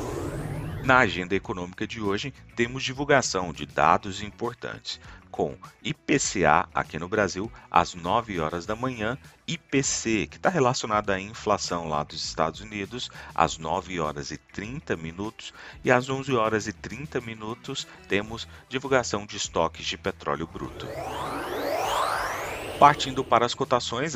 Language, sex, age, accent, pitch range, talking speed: Portuguese, male, 40-59, Brazilian, 85-120 Hz, 135 wpm